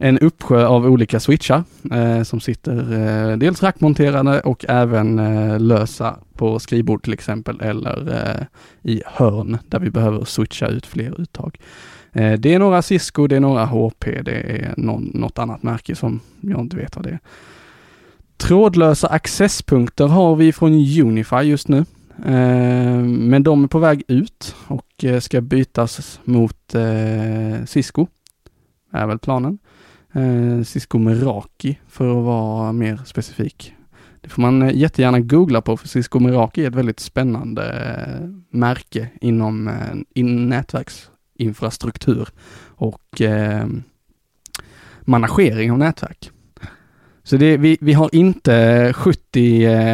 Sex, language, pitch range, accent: male, Swedish, 115-140 Hz, Norwegian